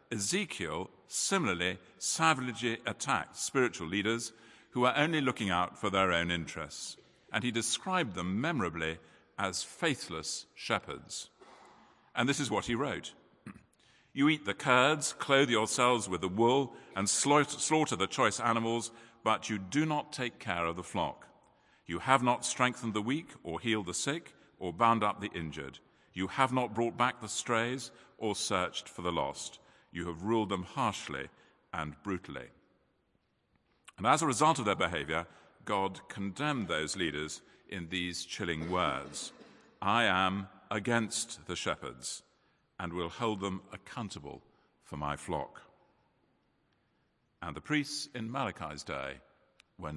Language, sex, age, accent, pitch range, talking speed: English, male, 50-69, British, 90-120 Hz, 145 wpm